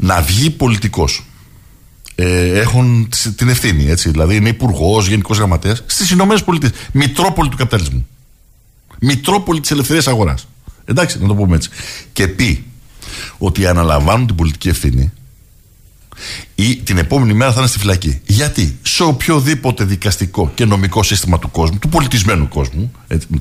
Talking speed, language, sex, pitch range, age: 145 wpm, Greek, male, 95-150 Hz, 60-79